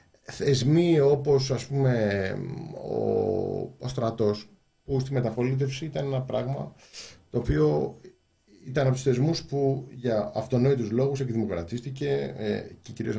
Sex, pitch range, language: male, 110-135 Hz, Greek